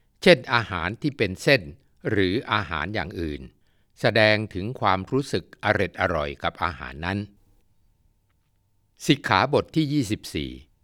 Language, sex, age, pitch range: Thai, male, 60-79, 90-120 Hz